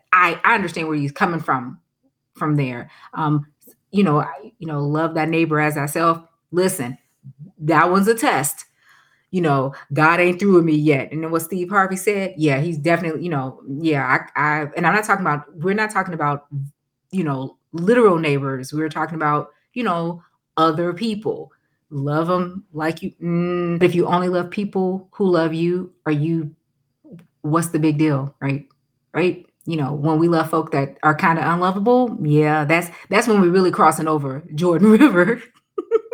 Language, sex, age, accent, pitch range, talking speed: English, female, 20-39, American, 145-190 Hz, 185 wpm